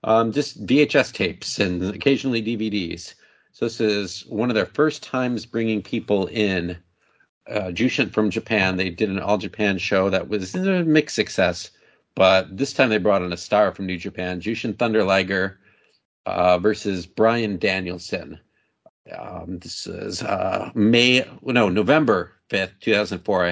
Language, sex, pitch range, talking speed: English, male, 95-115 Hz, 155 wpm